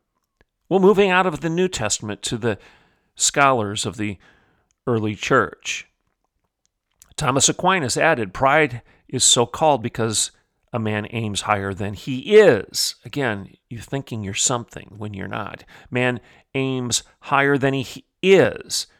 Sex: male